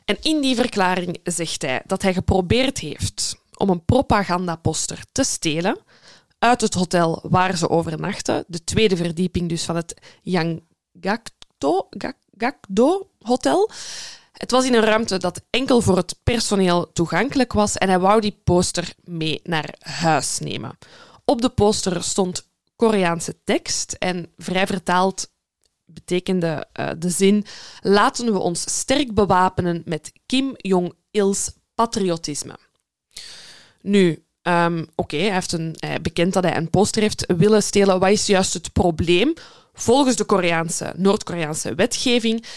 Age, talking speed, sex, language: 20-39, 140 wpm, female, Dutch